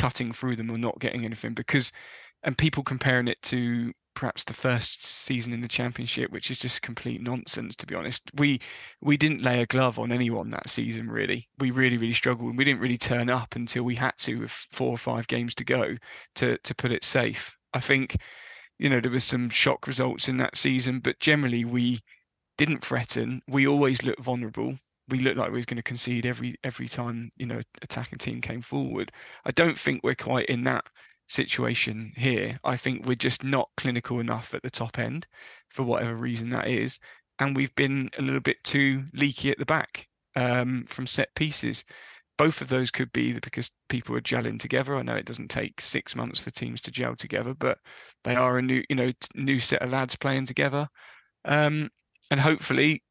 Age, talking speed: 20-39, 205 wpm